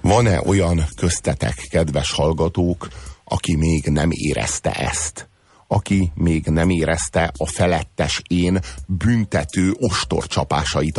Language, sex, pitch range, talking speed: Hungarian, male, 80-110 Hz, 110 wpm